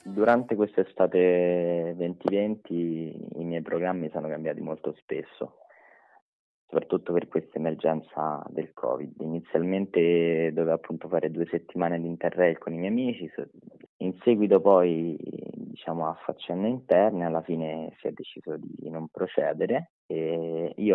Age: 20-39